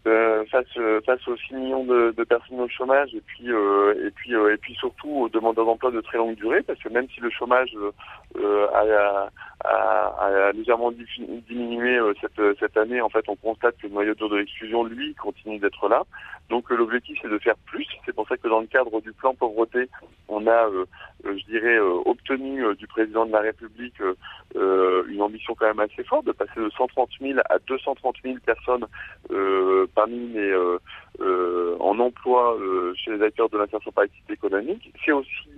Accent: French